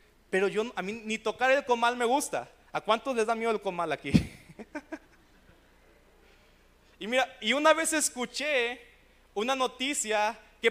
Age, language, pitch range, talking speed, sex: 30-49, Spanish, 185-235 Hz, 150 wpm, male